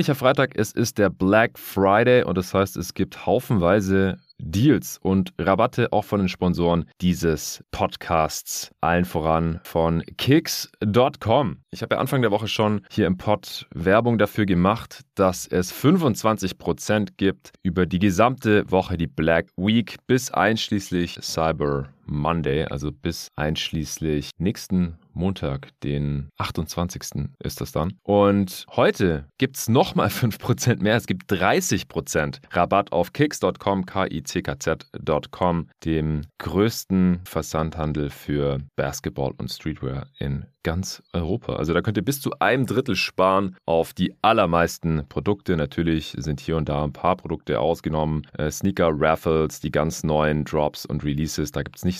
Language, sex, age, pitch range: German, male, 30-49, 80-105 Hz